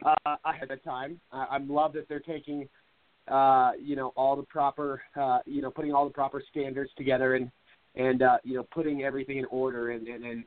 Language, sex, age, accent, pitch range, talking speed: English, male, 30-49, American, 120-140 Hz, 210 wpm